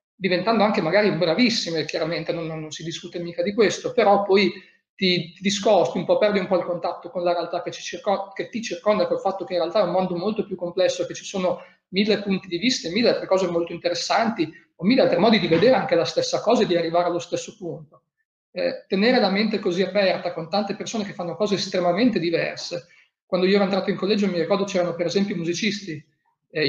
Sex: male